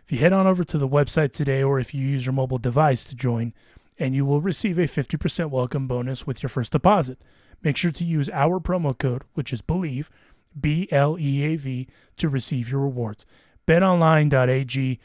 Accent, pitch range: American, 125-150 Hz